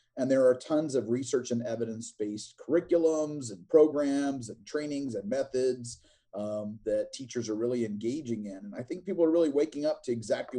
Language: English